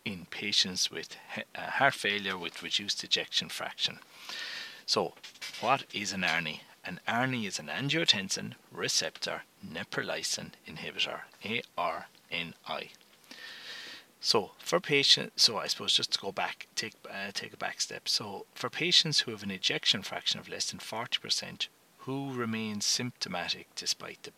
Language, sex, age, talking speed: English, male, 30-49, 145 wpm